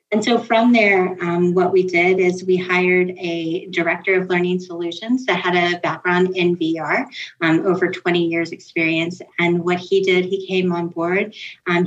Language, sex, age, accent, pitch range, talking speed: English, female, 30-49, American, 170-195 Hz, 180 wpm